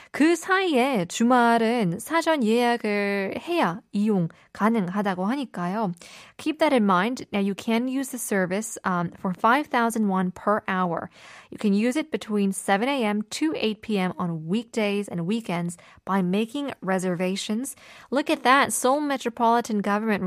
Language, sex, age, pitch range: Korean, female, 20-39, 195-270 Hz